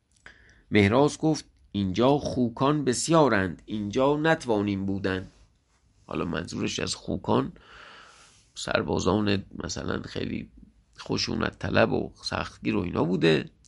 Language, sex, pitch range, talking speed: English, male, 110-150 Hz, 95 wpm